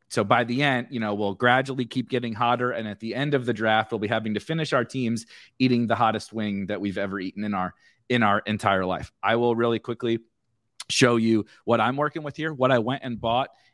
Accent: American